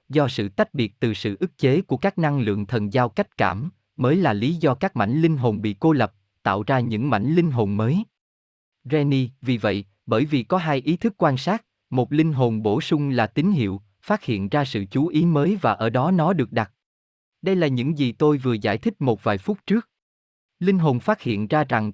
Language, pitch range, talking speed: Vietnamese, 110-155 Hz, 230 wpm